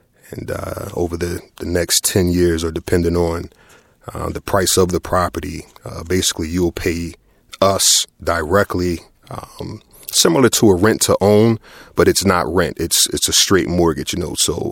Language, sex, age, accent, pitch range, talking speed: English, male, 30-49, American, 85-100 Hz, 170 wpm